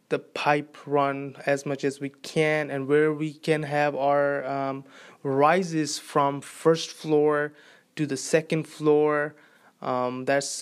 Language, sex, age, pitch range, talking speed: English, male, 20-39, 135-150 Hz, 140 wpm